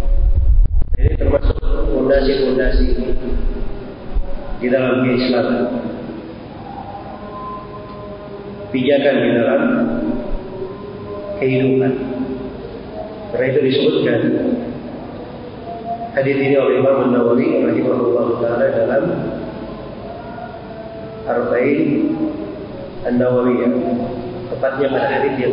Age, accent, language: 40-59, native, Indonesian